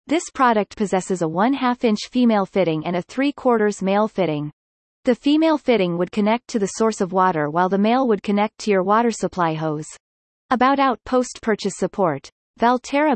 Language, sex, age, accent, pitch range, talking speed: English, female, 30-49, American, 185-255 Hz, 180 wpm